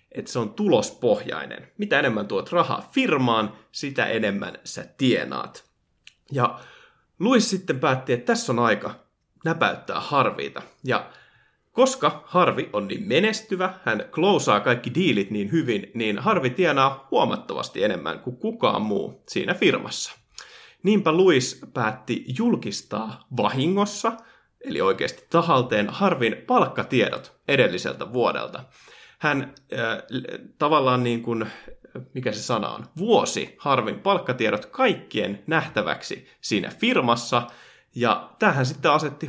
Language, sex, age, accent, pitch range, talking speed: Finnish, male, 30-49, native, 115-195 Hz, 120 wpm